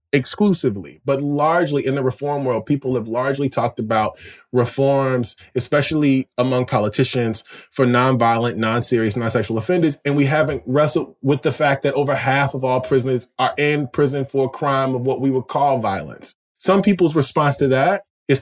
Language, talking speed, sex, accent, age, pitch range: English, 170 wpm, male, American, 20-39, 130-185 Hz